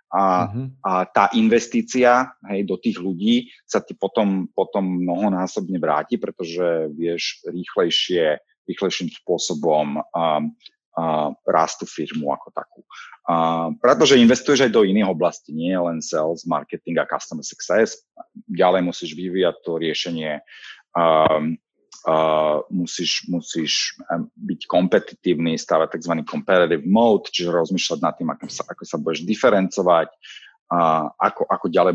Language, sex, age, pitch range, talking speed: Slovak, male, 30-49, 85-110 Hz, 130 wpm